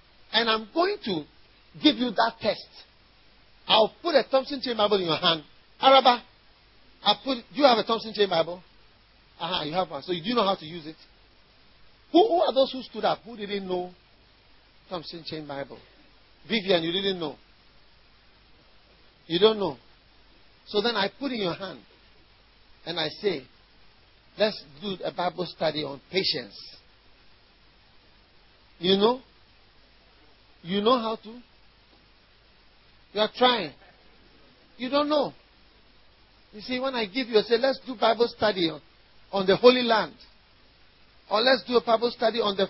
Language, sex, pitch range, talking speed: English, male, 165-235 Hz, 160 wpm